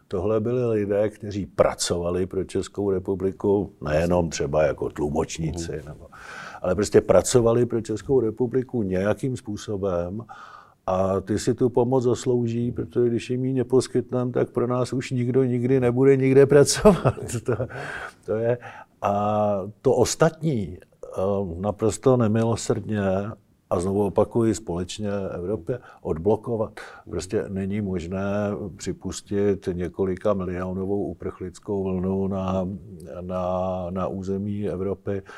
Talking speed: 115 wpm